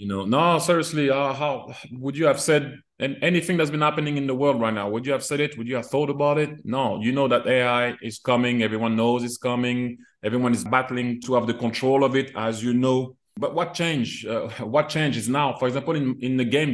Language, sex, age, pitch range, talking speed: English, male, 30-49, 115-135 Hz, 240 wpm